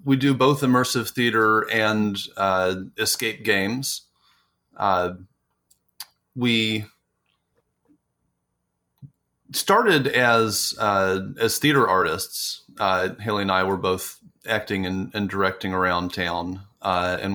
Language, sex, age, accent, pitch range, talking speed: English, male, 30-49, American, 95-115 Hz, 105 wpm